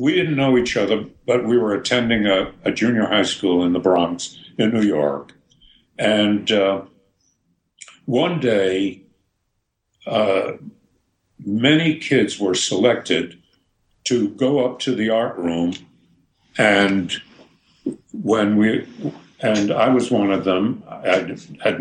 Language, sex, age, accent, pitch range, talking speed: English, male, 60-79, American, 95-125 Hz, 130 wpm